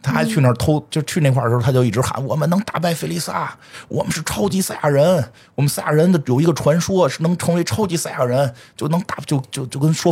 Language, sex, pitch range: Chinese, male, 100-145 Hz